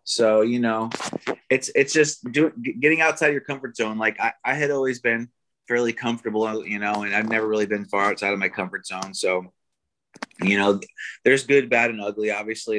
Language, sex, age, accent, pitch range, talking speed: English, male, 30-49, American, 100-115 Hz, 190 wpm